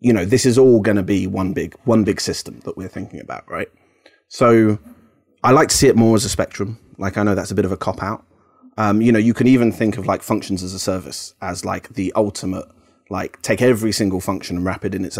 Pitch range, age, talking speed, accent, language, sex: 95-115 Hz, 30-49, 255 wpm, British, English, male